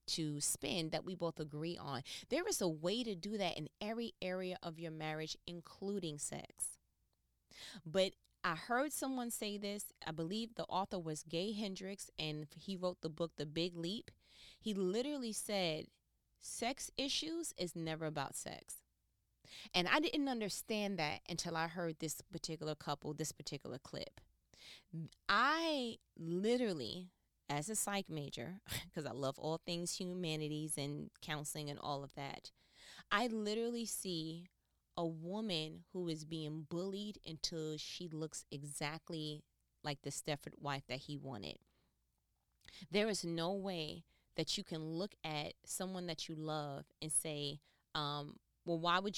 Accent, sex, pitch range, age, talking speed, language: American, female, 155-190 Hz, 20-39, 150 wpm, English